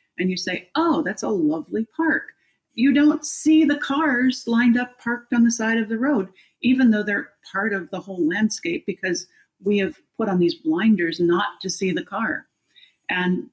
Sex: female